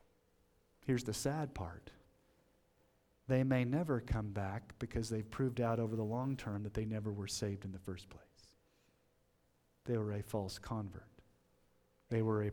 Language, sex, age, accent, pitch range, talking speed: English, male, 40-59, American, 110-145 Hz, 165 wpm